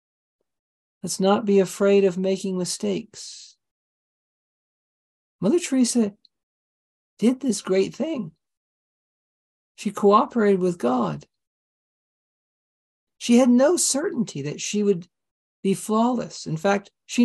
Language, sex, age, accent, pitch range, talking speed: English, male, 50-69, American, 175-235 Hz, 100 wpm